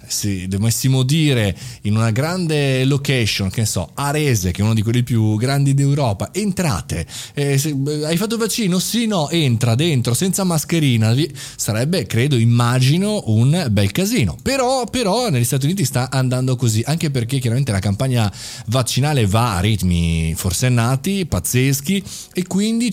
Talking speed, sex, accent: 160 wpm, male, native